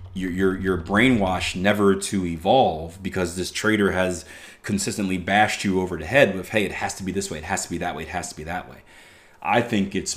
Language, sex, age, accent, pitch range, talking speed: English, male, 30-49, American, 85-105 Hz, 235 wpm